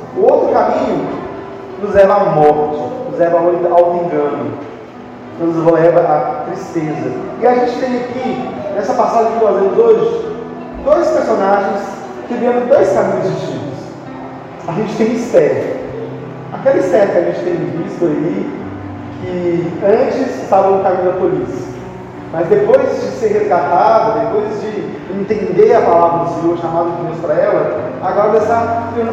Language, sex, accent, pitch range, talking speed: Portuguese, male, Brazilian, 170-240 Hz, 150 wpm